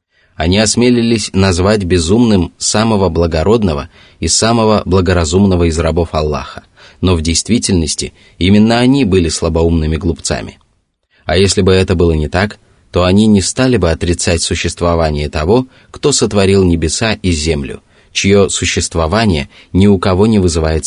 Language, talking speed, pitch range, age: Russian, 135 wpm, 85-100 Hz, 30-49